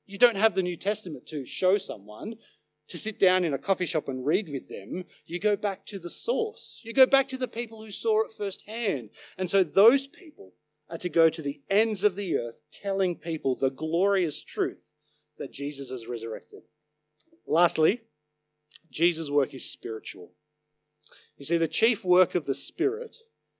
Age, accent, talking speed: 40-59, Australian, 180 wpm